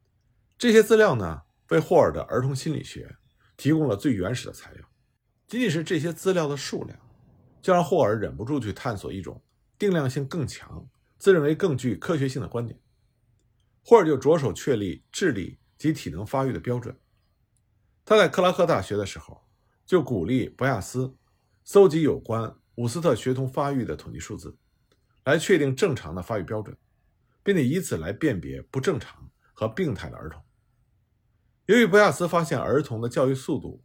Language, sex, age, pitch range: Chinese, male, 50-69, 110-160 Hz